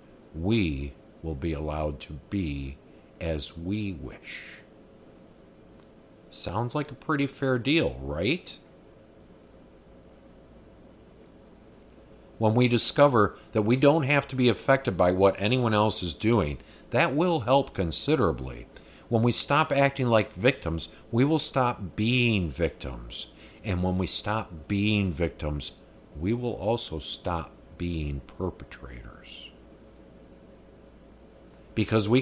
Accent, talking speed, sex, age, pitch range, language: American, 115 wpm, male, 50-69, 90-120 Hz, English